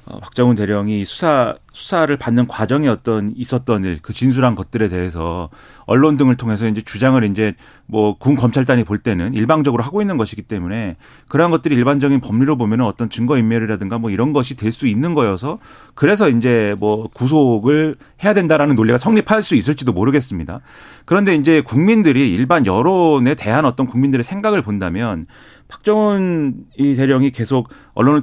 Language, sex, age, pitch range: Korean, male, 40-59, 110-150 Hz